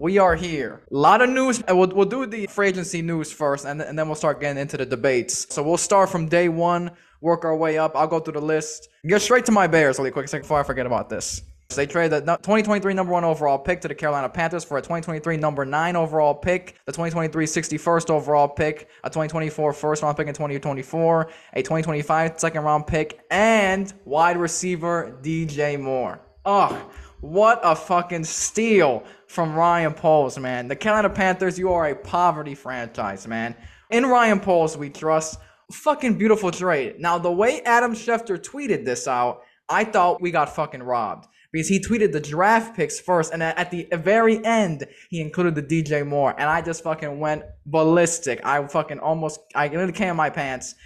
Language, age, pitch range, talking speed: English, 20-39, 150-180 Hz, 195 wpm